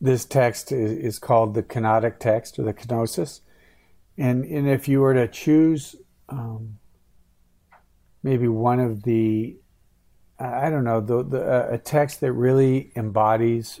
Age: 50-69